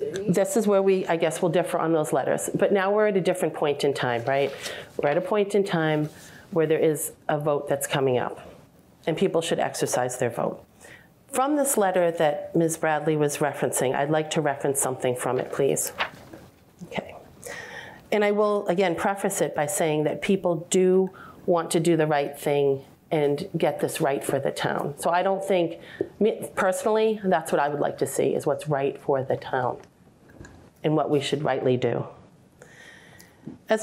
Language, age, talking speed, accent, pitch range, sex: English, 40-59, 190 wpm, American, 145-185 Hz, female